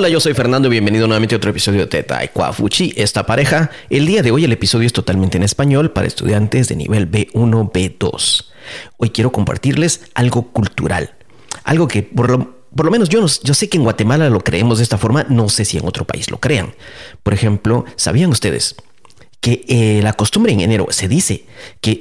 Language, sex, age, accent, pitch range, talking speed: Spanish, male, 40-59, Mexican, 105-145 Hz, 205 wpm